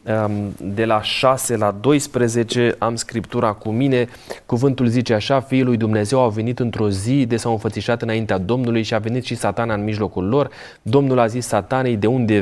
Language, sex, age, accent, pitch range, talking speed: Romanian, male, 30-49, native, 100-135 Hz, 185 wpm